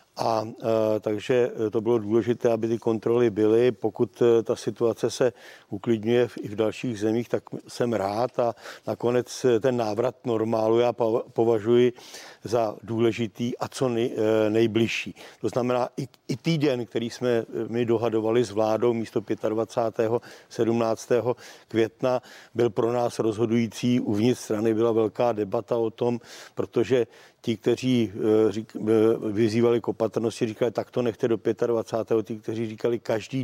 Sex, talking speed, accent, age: male, 130 wpm, native, 50-69